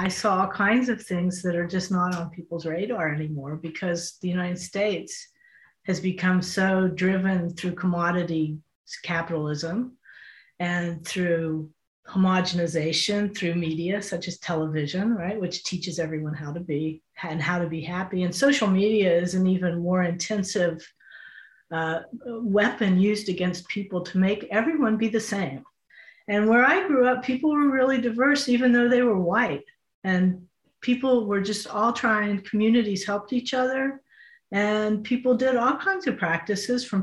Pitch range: 175-225 Hz